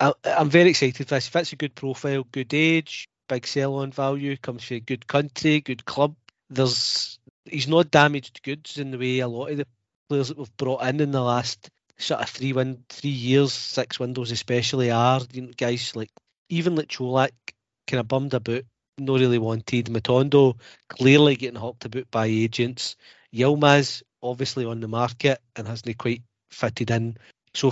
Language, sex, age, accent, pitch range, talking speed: English, male, 40-59, British, 120-140 Hz, 185 wpm